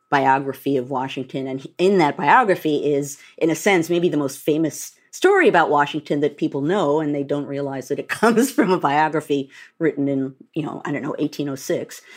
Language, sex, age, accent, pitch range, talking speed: English, female, 50-69, American, 145-225 Hz, 190 wpm